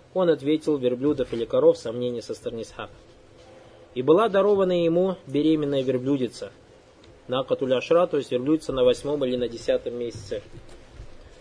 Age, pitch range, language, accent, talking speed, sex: 20-39, 130-180 Hz, Russian, native, 130 wpm, male